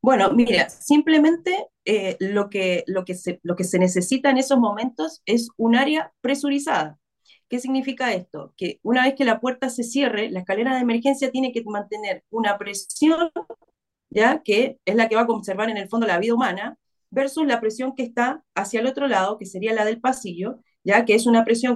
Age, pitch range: 30-49, 205-265 Hz